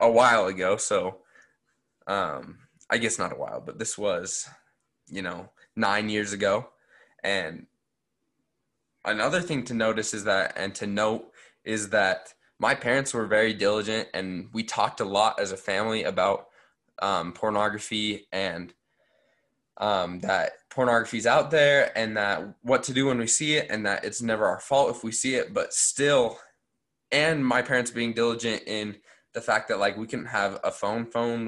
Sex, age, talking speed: male, 20-39, 170 wpm